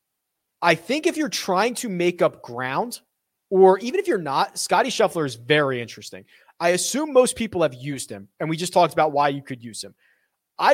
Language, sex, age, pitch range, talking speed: English, male, 30-49, 140-205 Hz, 205 wpm